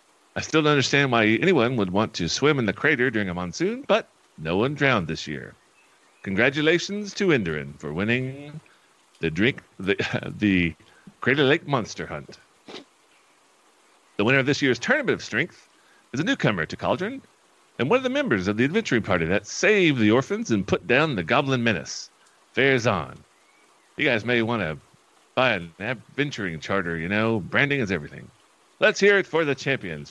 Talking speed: 175 wpm